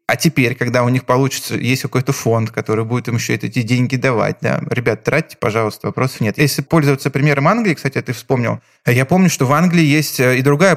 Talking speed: 205 wpm